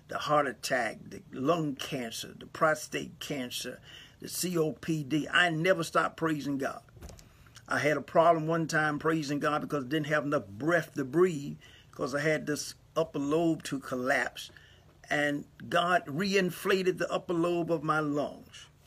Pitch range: 140-175 Hz